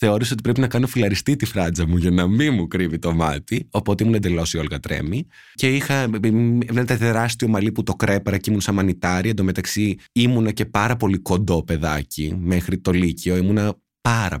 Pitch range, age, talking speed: 85-130 Hz, 20-39, 195 wpm